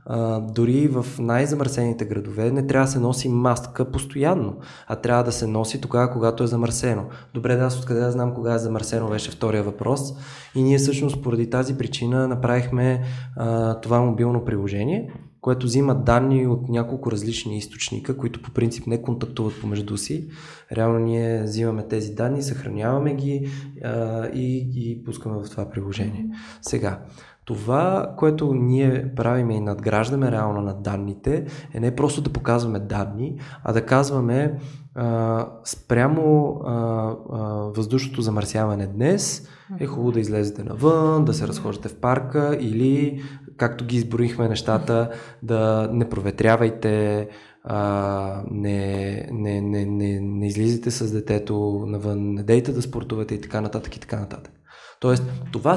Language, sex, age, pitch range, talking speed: Bulgarian, male, 20-39, 110-135 Hz, 150 wpm